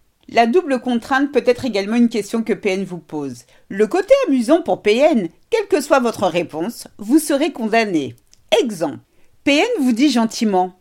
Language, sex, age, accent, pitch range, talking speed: French, female, 50-69, French, 210-310 Hz, 165 wpm